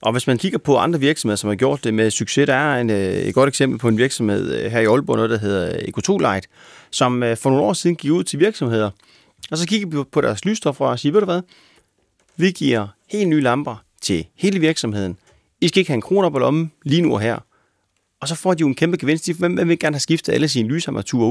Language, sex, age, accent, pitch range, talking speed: Danish, male, 30-49, native, 115-170 Hz, 240 wpm